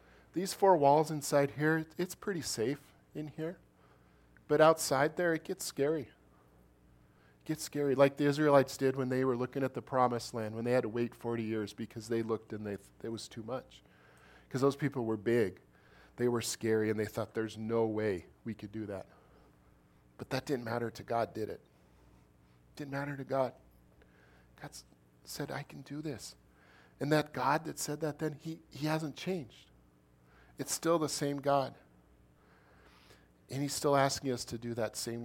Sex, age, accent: male, 40-59, American